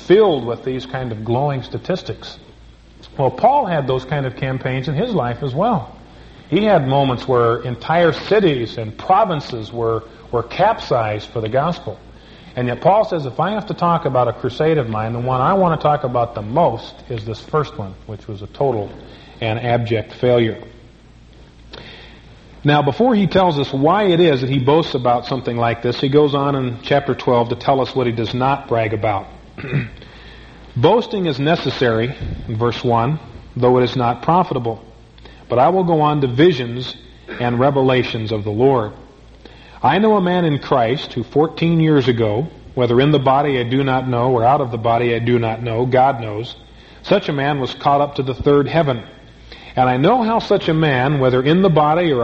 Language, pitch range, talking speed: English, 120-150 Hz, 195 wpm